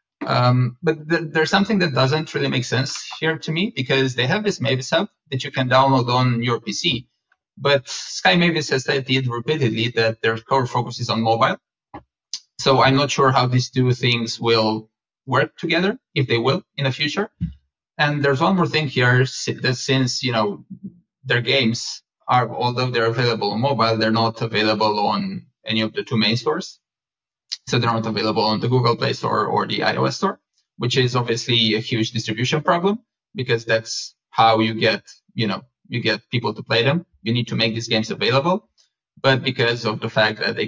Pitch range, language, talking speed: 115-140 Hz, English, 195 wpm